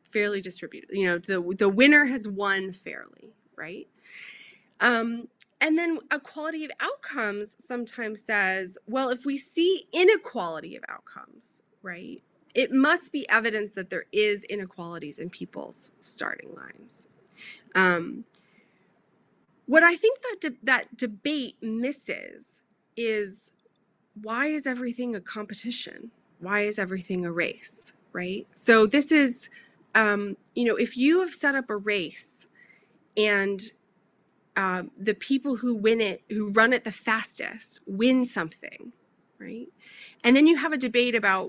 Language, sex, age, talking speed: English, female, 30-49, 135 wpm